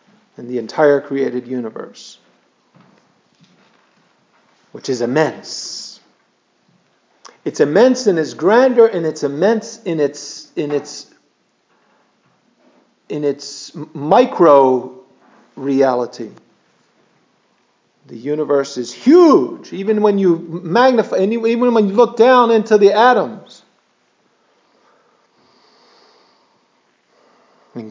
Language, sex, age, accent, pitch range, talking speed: English, male, 50-69, American, 135-220 Hz, 90 wpm